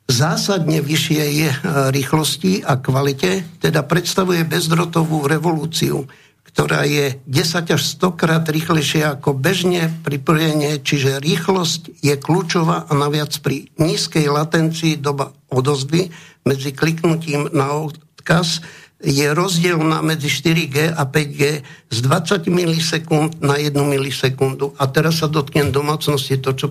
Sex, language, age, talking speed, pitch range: male, Slovak, 60-79, 125 wpm, 135-160 Hz